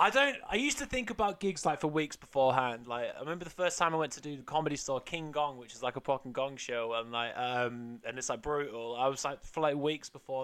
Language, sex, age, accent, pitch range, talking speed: English, male, 20-39, British, 130-175 Hz, 280 wpm